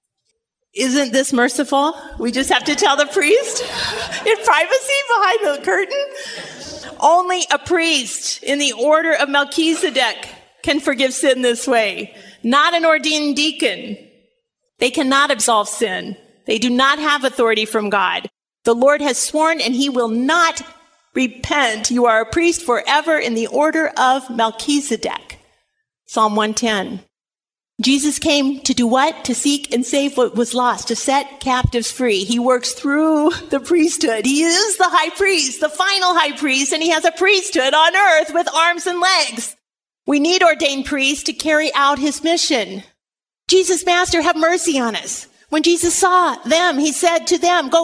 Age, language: 40-59, English